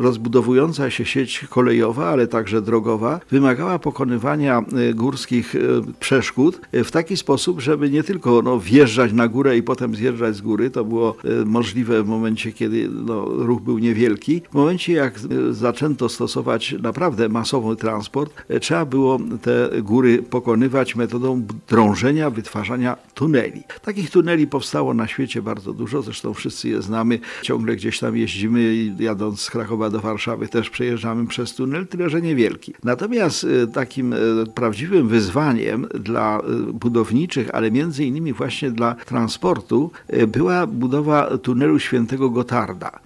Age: 50-69